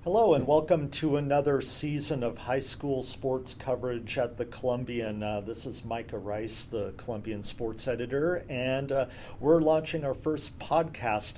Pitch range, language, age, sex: 115-135 Hz, English, 40-59, male